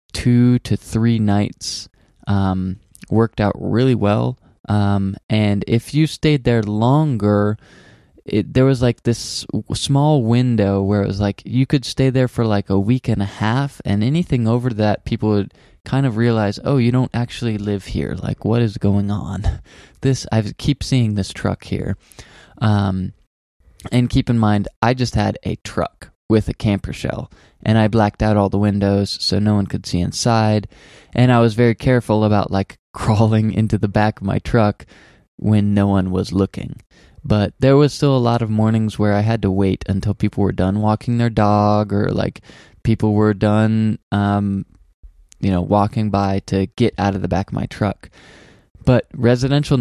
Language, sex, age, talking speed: English, male, 20-39, 185 wpm